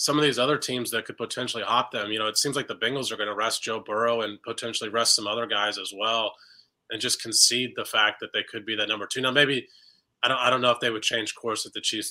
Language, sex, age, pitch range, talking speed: English, male, 20-39, 115-145 Hz, 285 wpm